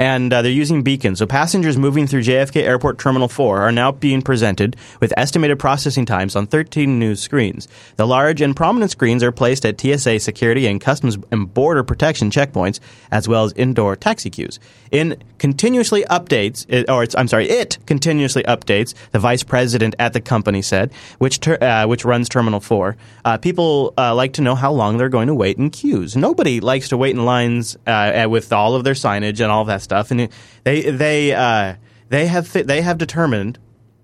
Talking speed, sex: 195 wpm, male